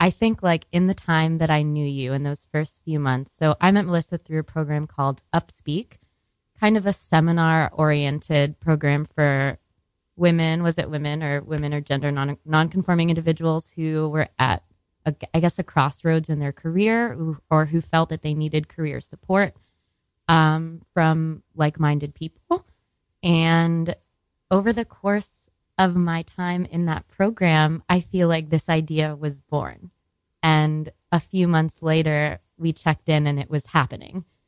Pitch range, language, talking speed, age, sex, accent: 150-180 Hz, English, 160 wpm, 20-39, female, American